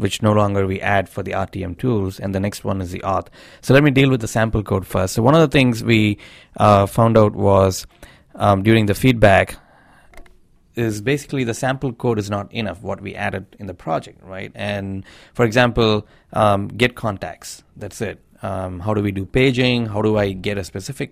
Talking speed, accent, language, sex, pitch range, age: 210 wpm, Indian, English, male, 95-115 Hz, 20-39